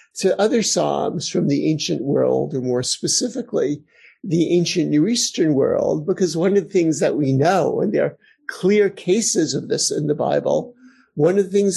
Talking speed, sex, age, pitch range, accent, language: 190 wpm, male, 50-69, 155-215 Hz, American, English